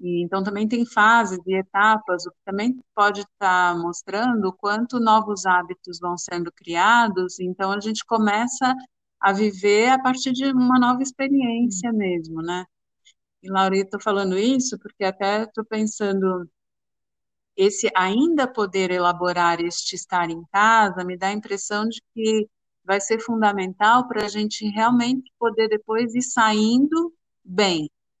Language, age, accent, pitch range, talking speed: Portuguese, 50-69, Brazilian, 180-220 Hz, 145 wpm